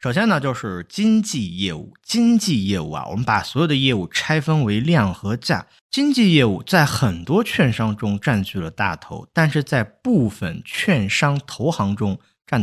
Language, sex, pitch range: Chinese, male, 95-140 Hz